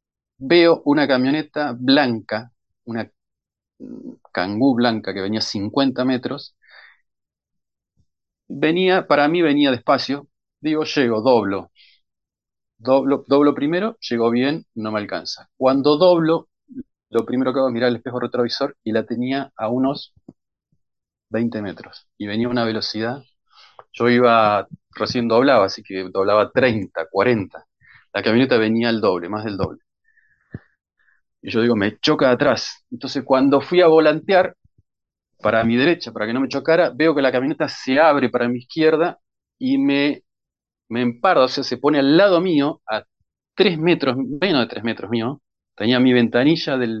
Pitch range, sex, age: 110-145 Hz, male, 40-59